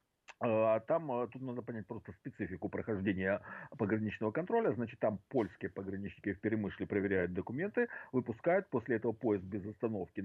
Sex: male